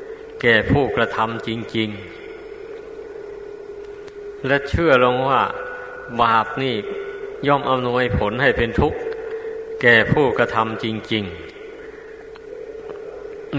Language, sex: Thai, male